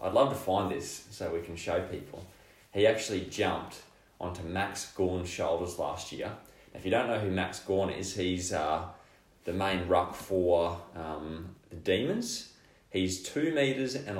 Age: 20-39